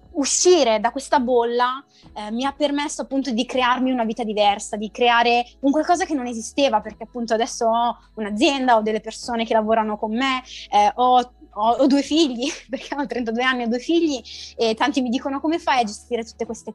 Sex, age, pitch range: female, 20-39, 225-275 Hz